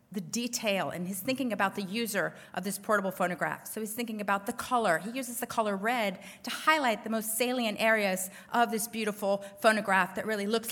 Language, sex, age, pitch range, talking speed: English, female, 30-49, 180-220 Hz, 200 wpm